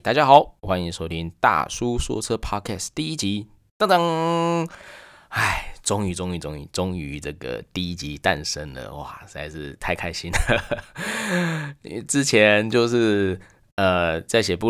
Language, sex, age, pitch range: Chinese, male, 20-39, 80-105 Hz